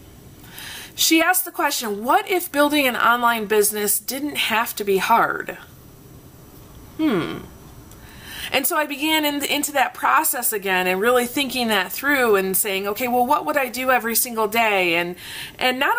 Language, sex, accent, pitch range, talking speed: English, female, American, 210-300 Hz, 170 wpm